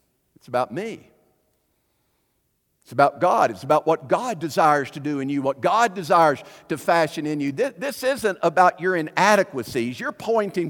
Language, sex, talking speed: English, male, 170 wpm